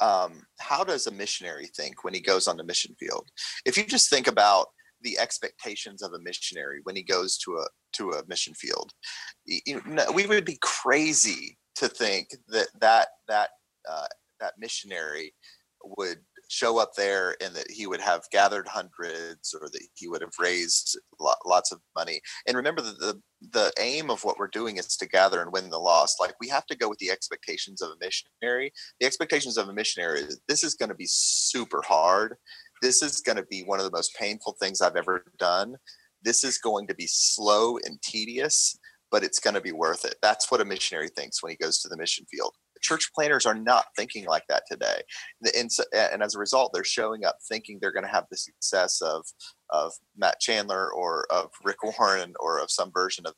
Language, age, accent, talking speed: English, 30-49, American, 205 wpm